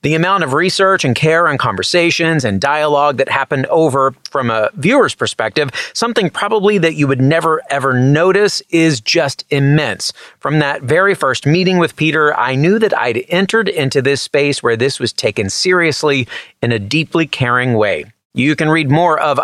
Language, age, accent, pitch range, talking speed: English, 30-49, American, 145-190 Hz, 180 wpm